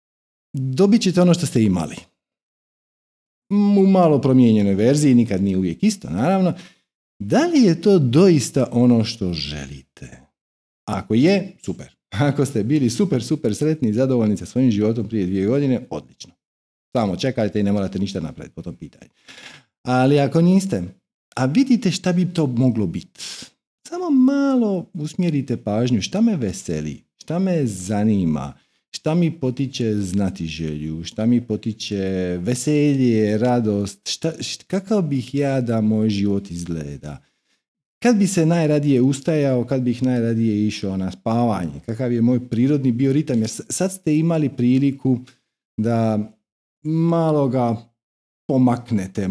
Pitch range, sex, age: 100-150 Hz, male, 50-69